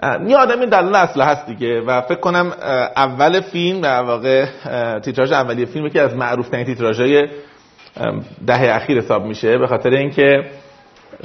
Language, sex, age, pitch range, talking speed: Persian, male, 30-49, 145-230 Hz, 155 wpm